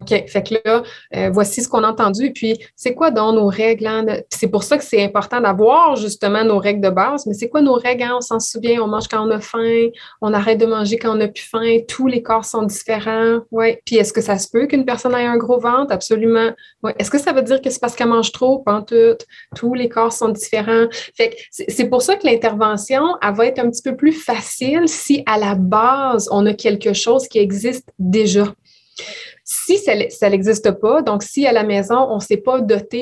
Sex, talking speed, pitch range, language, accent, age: female, 240 wpm, 210-255 Hz, French, Canadian, 20-39